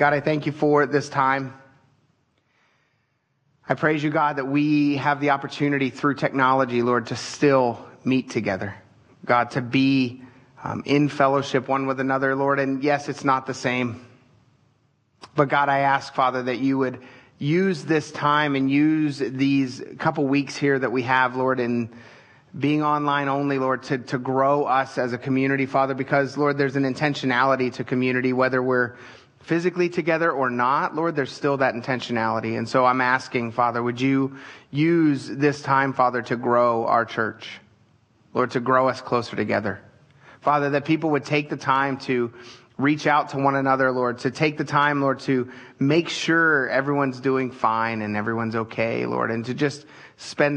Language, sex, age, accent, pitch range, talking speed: English, male, 30-49, American, 125-145 Hz, 170 wpm